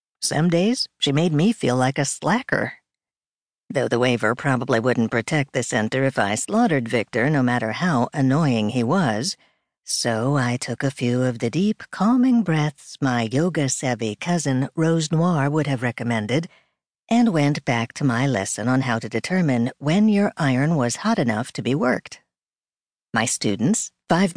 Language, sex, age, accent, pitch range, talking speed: English, female, 50-69, American, 120-165 Hz, 165 wpm